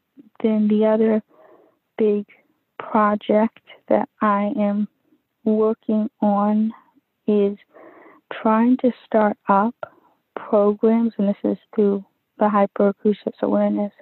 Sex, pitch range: female, 205-250 Hz